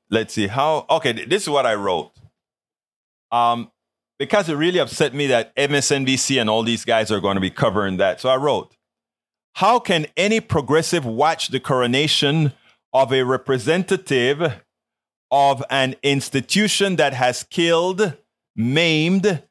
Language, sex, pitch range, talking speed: English, male, 130-175 Hz, 145 wpm